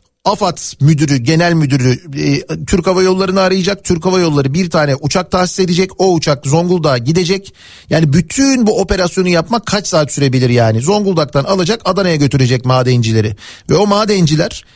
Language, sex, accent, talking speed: Turkish, male, native, 155 wpm